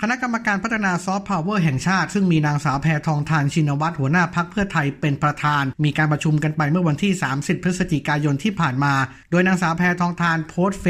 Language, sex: Thai, male